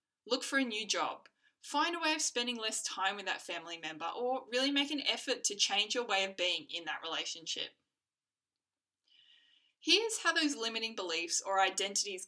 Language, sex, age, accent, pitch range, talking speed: English, female, 20-39, Australian, 195-285 Hz, 180 wpm